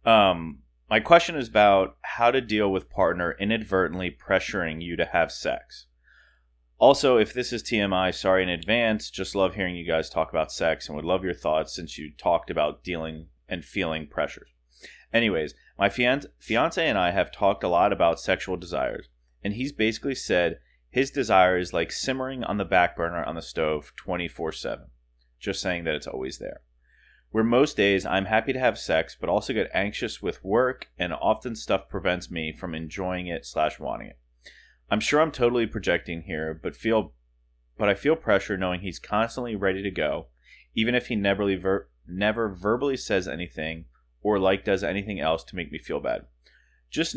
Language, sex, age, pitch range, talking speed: English, male, 30-49, 80-110 Hz, 180 wpm